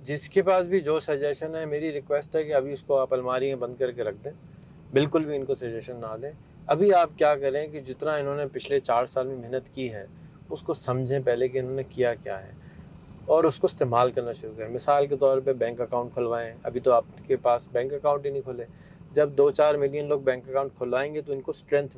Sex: male